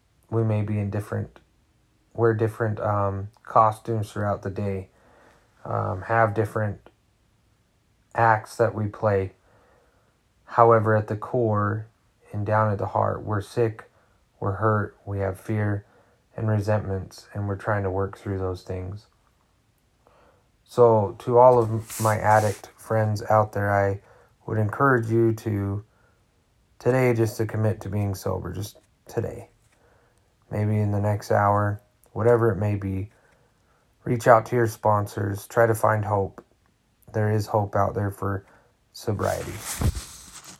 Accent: American